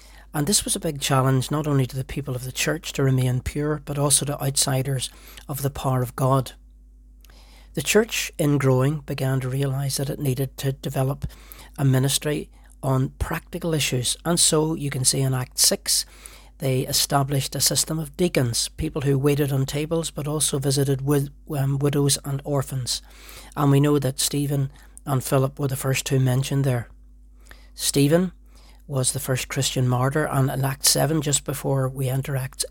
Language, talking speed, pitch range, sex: English, 180 wpm, 130-145 Hz, male